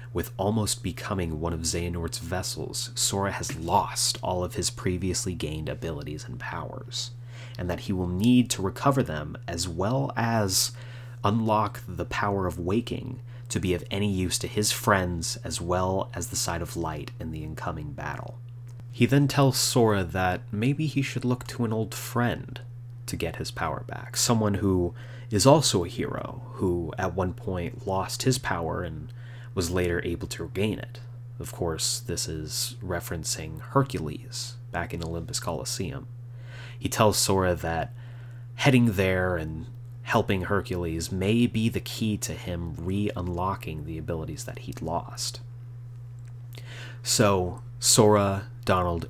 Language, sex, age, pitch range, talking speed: English, male, 30-49, 90-120 Hz, 155 wpm